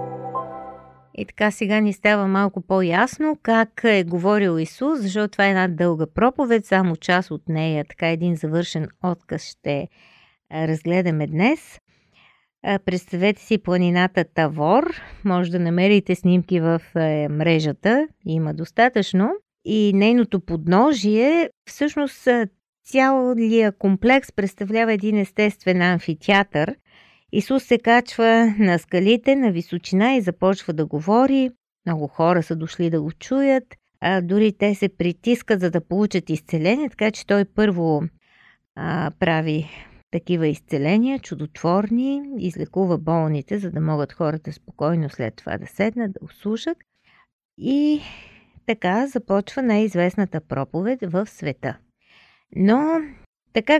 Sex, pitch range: female, 165-230 Hz